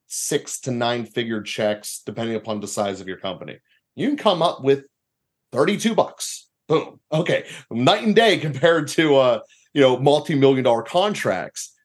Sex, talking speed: male, 160 wpm